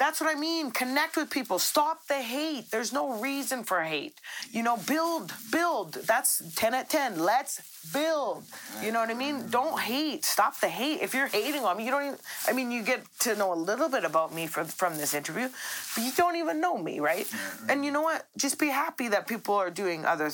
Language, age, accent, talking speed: English, 30-49, American, 225 wpm